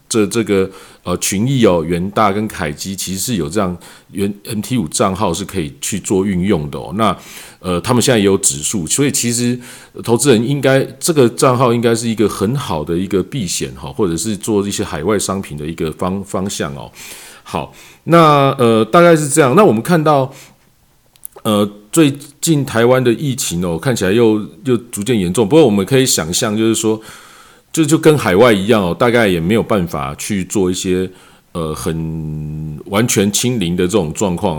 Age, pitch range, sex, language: 40-59, 90-130 Hz, male, Chinese